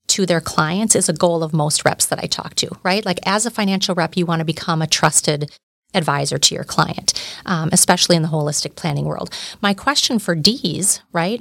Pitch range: 165-200 Hz